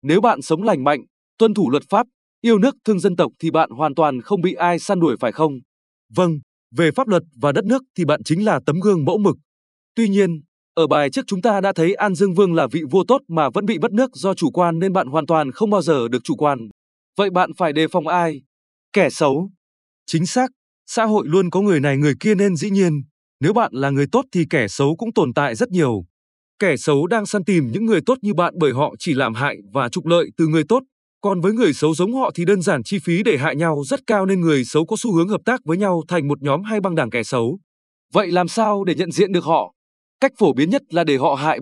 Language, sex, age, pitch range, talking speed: Vietnamese, male, 20-39, 150-205 Hz, 260 wpm